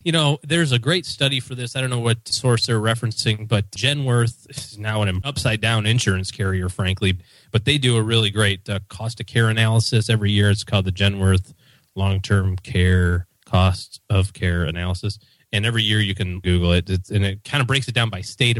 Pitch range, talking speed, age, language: 95-120 Hz, 195 wpm, 30-49, English